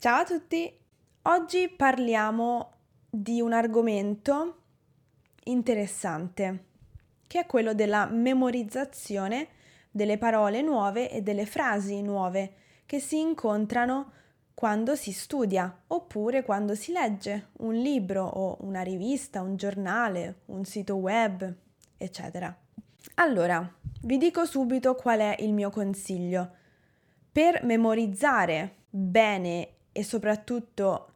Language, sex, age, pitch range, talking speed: Italian, female, 20-39, 200-255 Hz, 110 wpm